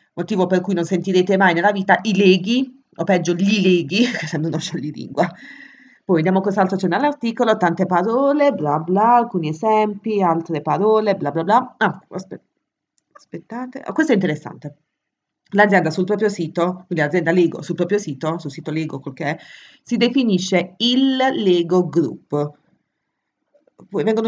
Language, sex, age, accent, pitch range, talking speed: Italian, female, 30-49, native, 160-210 Hz, 160 wpm